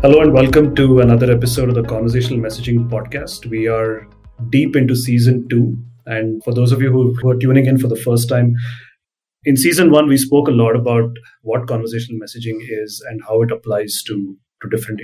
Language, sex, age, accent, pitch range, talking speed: English, male, 30-49, Indian, 110-125 Hz, 195 wpm